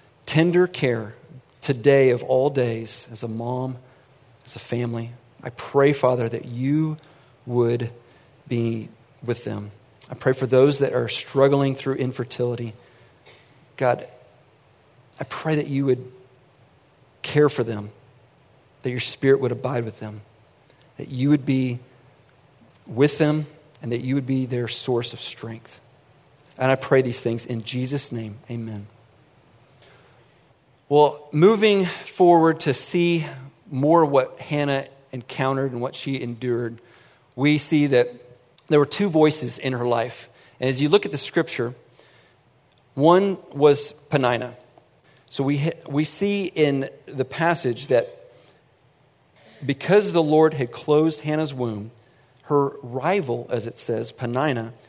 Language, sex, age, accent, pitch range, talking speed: English, male, 40-59, American, 120-145 Hz, 135 wpm